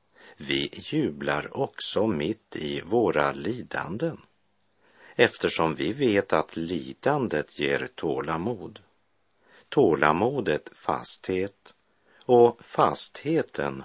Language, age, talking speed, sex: Swedish, 50-69, 80 wpm, male